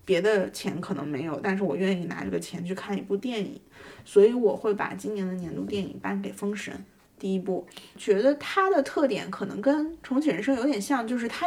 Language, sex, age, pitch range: Chinese, female, 20-39, 195-235 Hz